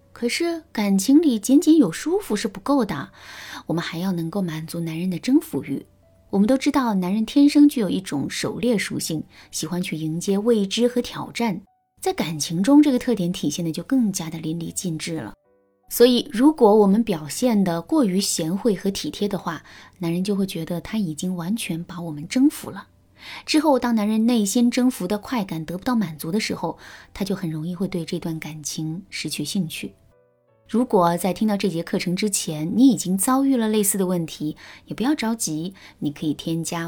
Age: 20-39